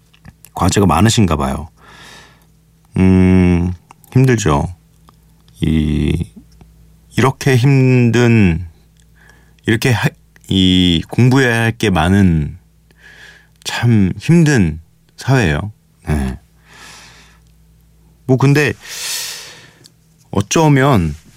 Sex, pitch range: male, 85-140 Hz